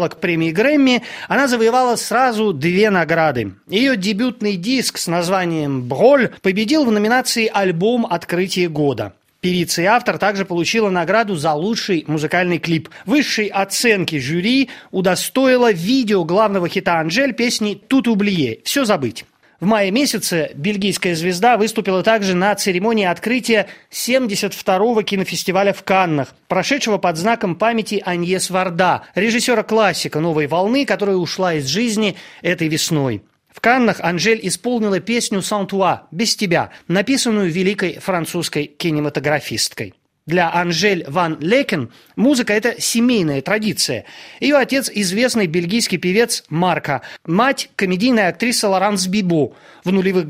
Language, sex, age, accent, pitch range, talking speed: Russian, male, 30-49, native, 170-225 Hz, 130 wpm